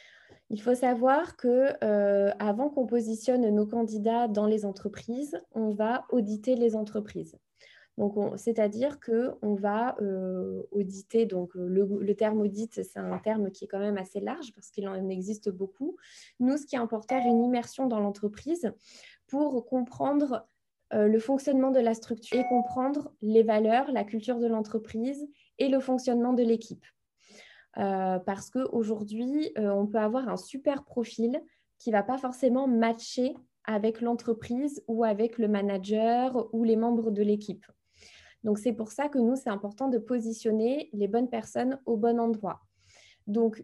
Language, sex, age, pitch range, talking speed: French, female, 20-39, 210-250 Hz, 160 wpm